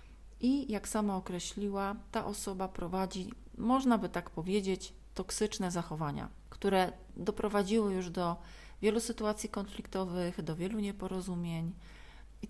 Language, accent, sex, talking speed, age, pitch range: Polish, native, female, 115 wpm, 40-59, 170-205 Hz